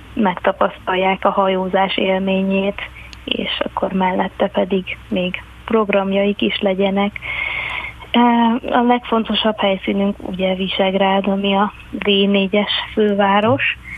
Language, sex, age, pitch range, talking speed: Hungarian, female, 30-49, 190-200 Hz, 90 wpm